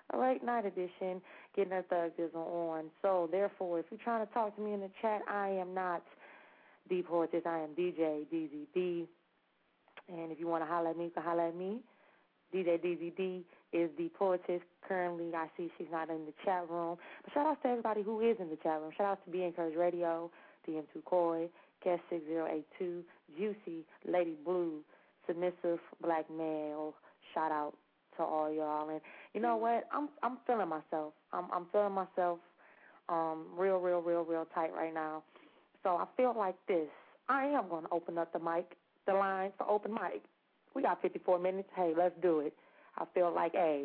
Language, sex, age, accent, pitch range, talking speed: English, female, 20-39, American, 165-195 Hz, 190 wpm